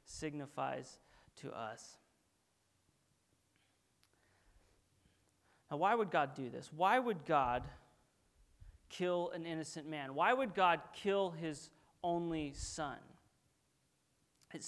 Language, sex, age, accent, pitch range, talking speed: English, male, 30-49, American, 150-190 Hz, 100 wpm